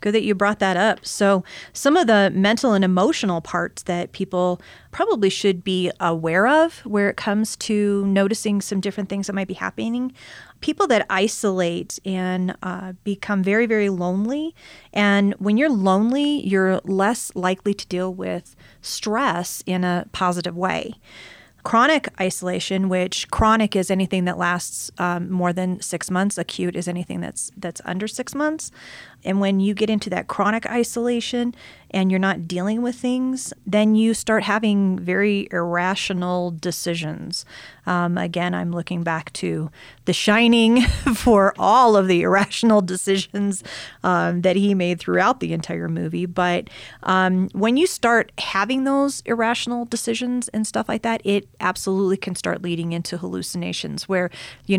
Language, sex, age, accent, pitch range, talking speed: English, female, 30-49, American, 180-215 Hz, 155 wpm